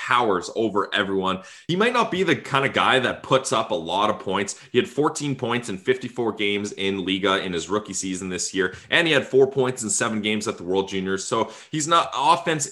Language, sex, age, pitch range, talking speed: English, male, 20-39, 105-135 Hz, 230 wpm